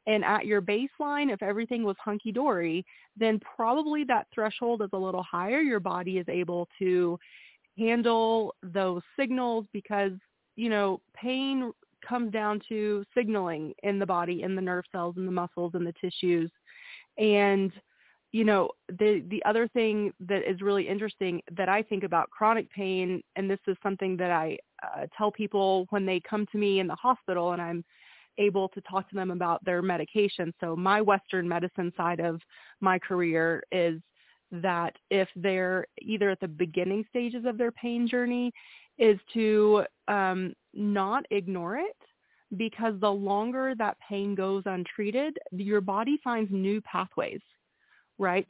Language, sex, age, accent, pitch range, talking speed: English, female, 30-49, American, 185-220 Hz, 160 wpm